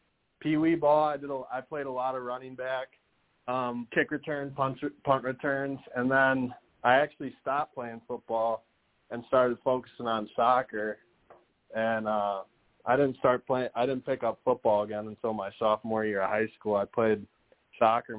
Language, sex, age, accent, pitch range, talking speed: English, male, 20-39, American, 115-130 Hz, 170 wpm